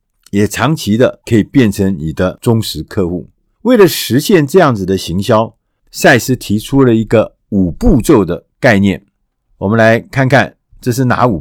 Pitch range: 105-160 Hz